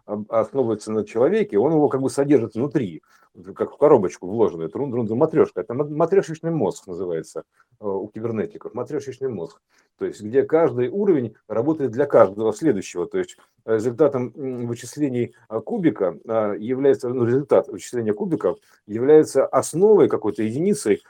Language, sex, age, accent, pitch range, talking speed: Russian, male, 50-69, native, 115-160 Hz, 130 wpm